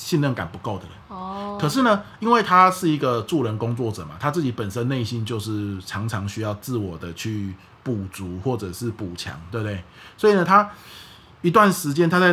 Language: Chinese